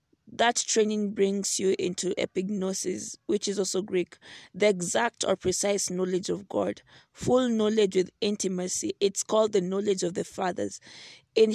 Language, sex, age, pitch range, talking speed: English, female, 20-39, 185-215 Hz, 150 wpm